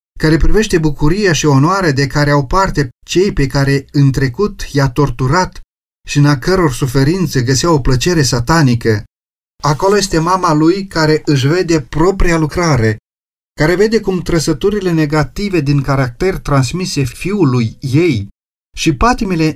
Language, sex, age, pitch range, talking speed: Romanian, male, 40-59, 135-175 Hz, 140 wpm